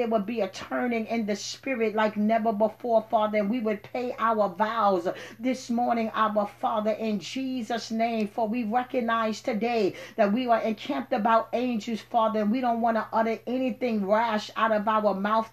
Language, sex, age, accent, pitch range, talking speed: English, female, 40-59, American, 215-240 Hz, 185 wpm